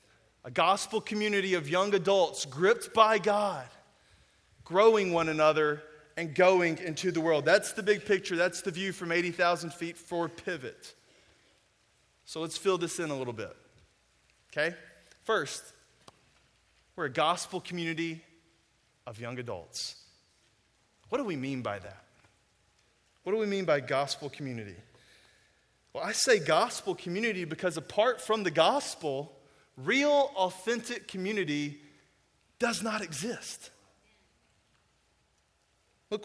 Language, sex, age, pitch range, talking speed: English, male, 20-39, 135-175 Hz, 125 wpm